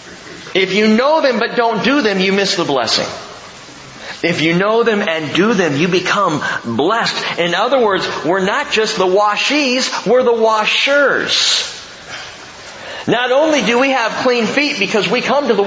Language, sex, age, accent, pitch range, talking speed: English, male, 50-69, American, 135-230 Hz, 170 wpm